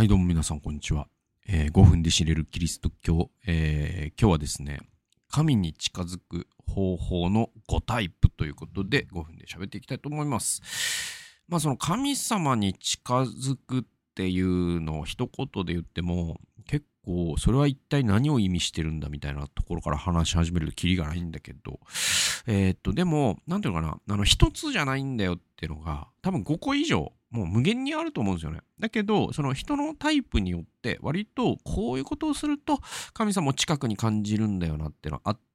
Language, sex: Japanese, male